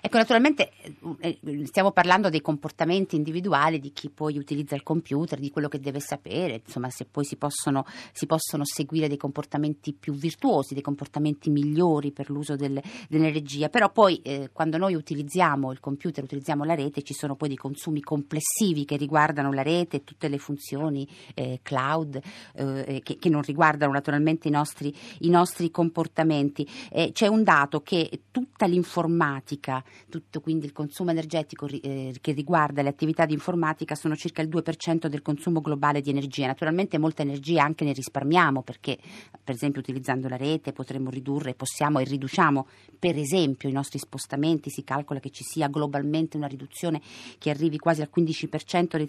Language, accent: Italian, native